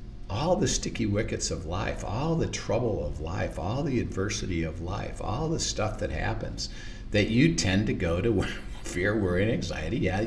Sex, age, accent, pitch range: male, 50-69, American, 90-110 Hz